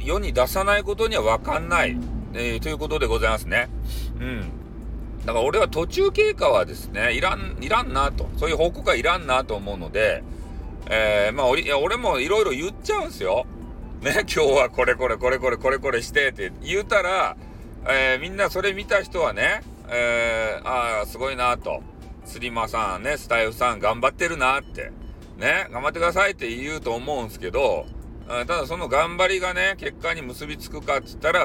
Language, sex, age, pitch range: Japanese, male, 40-59, 100-145 Hz